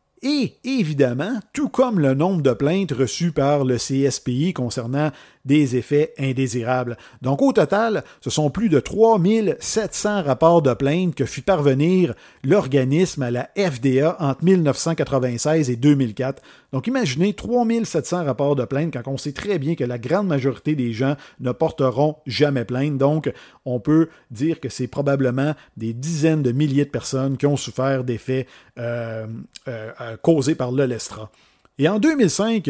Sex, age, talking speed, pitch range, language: male, 50-69, 150 wpm, 130-185 Hz, French